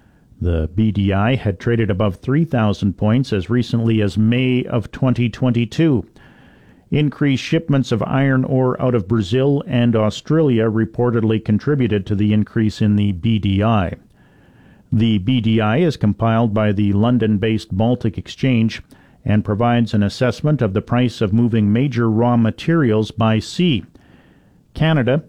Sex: male